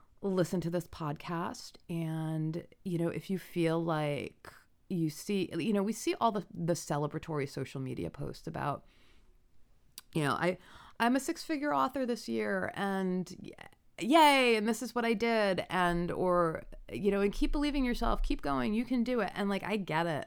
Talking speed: 180 wpm